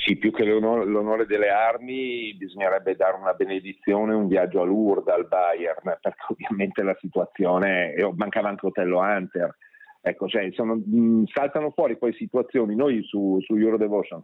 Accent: native